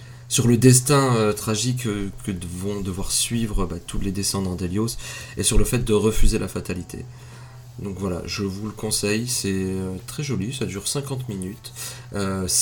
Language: French